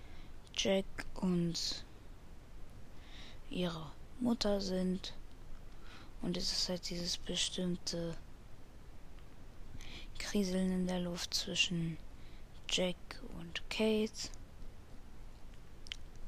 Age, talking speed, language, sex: 20-39, 70 wpm, German, female